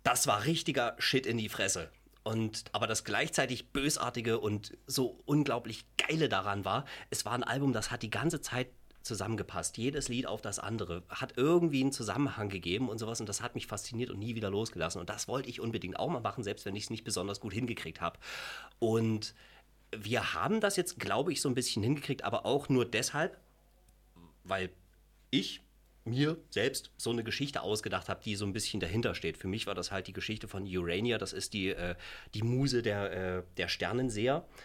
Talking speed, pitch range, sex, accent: 195 wpm, 100-130 Hz, male, German